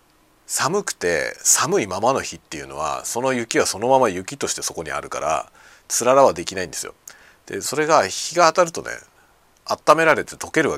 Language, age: Japanese, 40-59